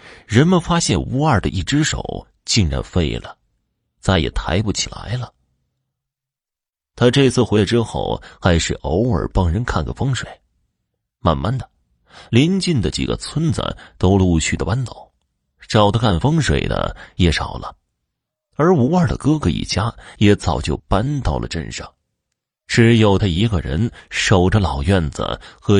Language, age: Chinese, 30-49